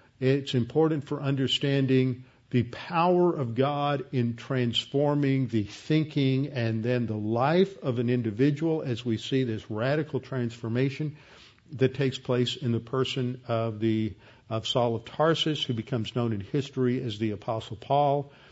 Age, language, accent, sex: 50-69, English, American, male